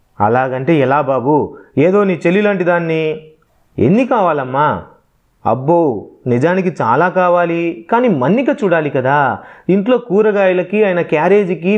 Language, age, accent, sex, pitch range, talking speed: Telugu, 30-49, native, male, 145-200 Hz, 105 wpm